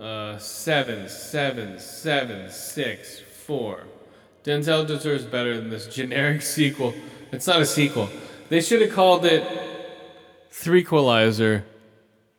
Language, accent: English, American